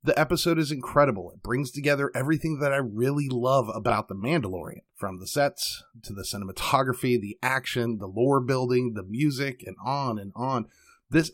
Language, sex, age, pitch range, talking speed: English, male, 30-49, 120-160 Hz, 175 wpm